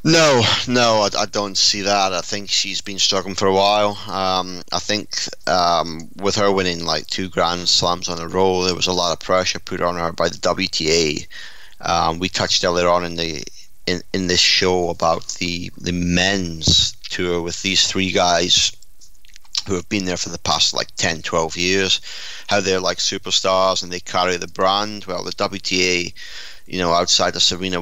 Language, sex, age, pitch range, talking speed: English, male, 30-49, 90-100 Hz, 190 wpm